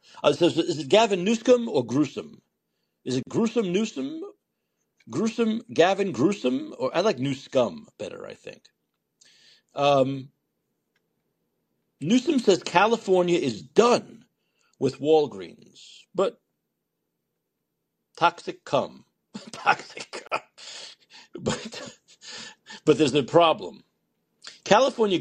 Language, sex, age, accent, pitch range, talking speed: English, male, 60-79, American, 135-200 Hz, 100 wpm